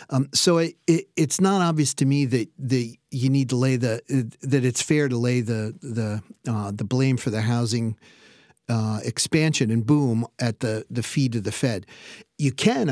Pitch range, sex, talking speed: 120-150 Hz, male, 190 wpm